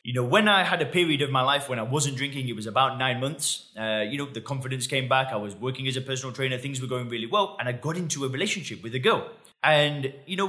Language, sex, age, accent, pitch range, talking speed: English, male, 20-39, British, 130-160 Hz, 285 wpm